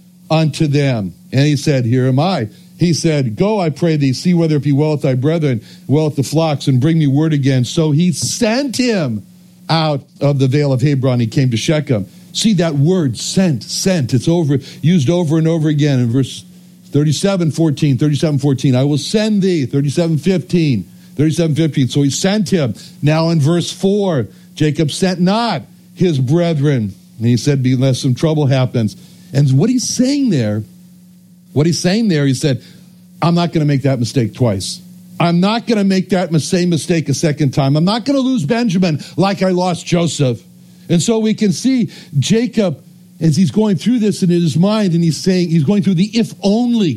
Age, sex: 60-79, male